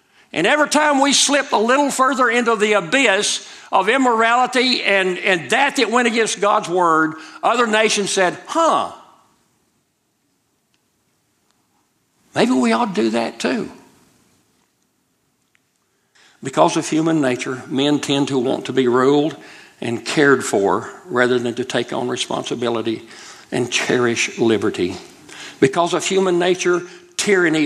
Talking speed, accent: 130 wpm, American